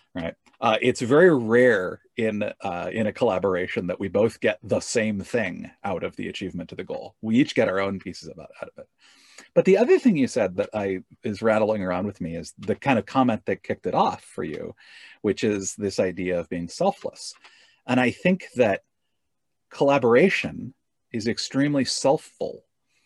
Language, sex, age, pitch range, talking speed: English, male, 40-59, 90-125 Hz, 190 wpm